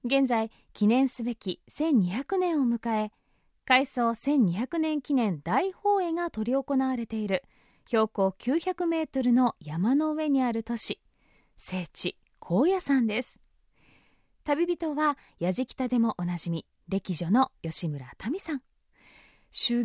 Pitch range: 215-305 Hz